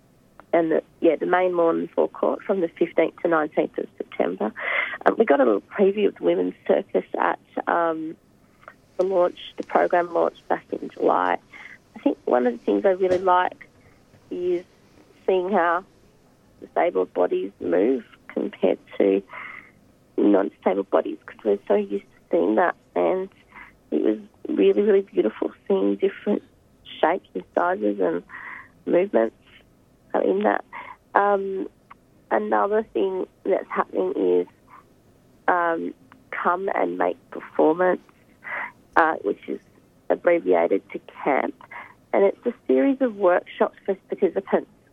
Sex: female